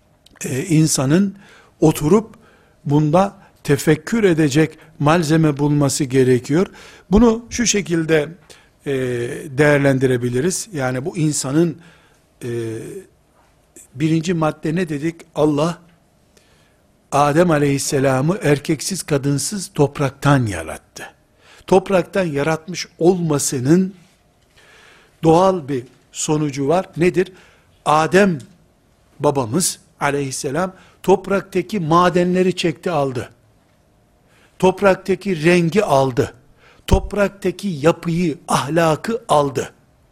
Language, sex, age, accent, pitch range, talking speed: Turkish, male, 60-79, native, 145-185 Hz, 75 wpm